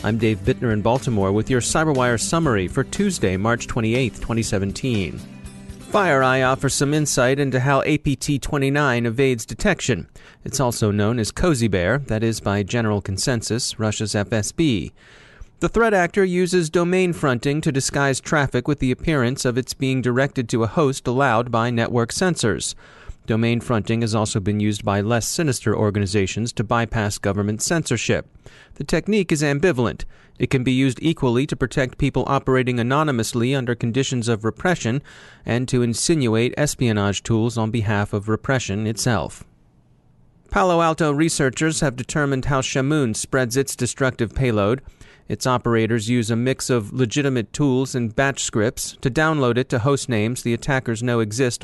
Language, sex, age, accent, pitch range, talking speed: English, male, 30-49, American, 115-140 Hz, 155 wpm